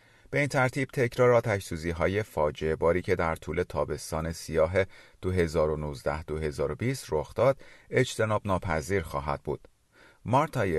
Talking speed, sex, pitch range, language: 100 wpm, male, 80-120 Hz, Persian